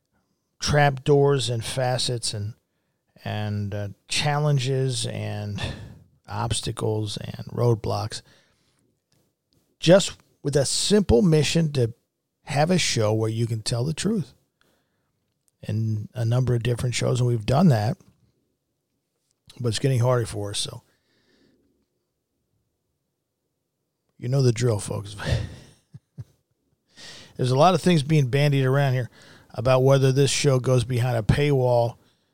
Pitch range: 115-140 Hz